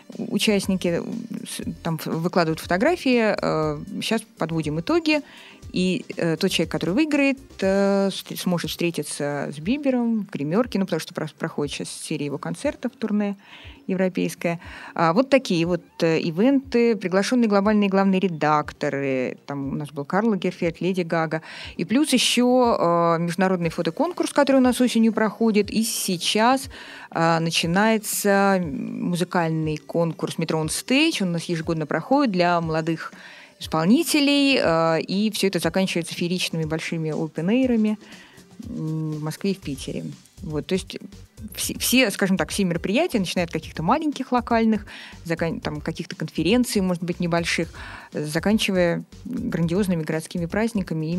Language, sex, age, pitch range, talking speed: Russian, female, 20-39, 165-220 Hz, 125 wpm